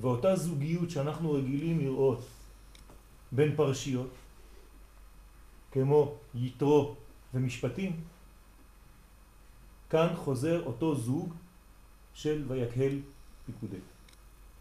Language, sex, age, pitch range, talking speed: French, male, 40-59, 115-155 Hz, 70 wpm